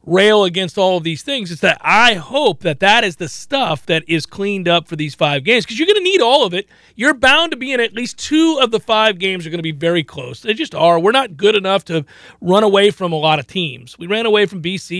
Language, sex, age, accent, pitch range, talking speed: English, male, 40-59, American, 175-245 Hz, 275 wpm